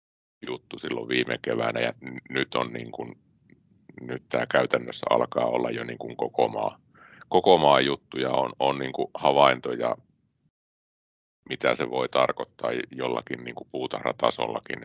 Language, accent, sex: Finnish, native, male